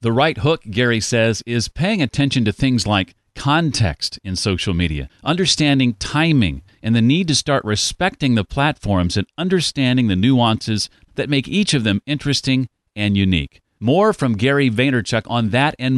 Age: 40-59